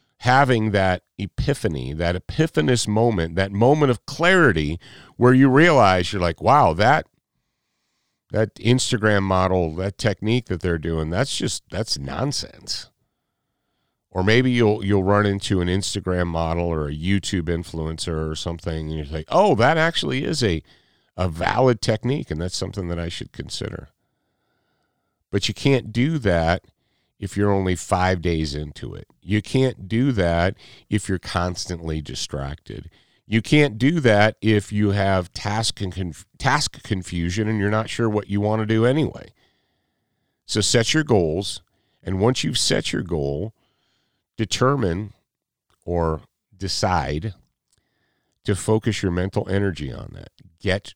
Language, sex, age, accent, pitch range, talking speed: English, male, 50-69, American, 90-115 Hz, 145 wpm